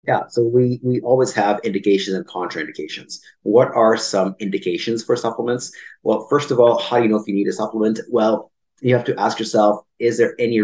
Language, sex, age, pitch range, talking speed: English, male, 30-49, 100-125 Hz, 210 wpm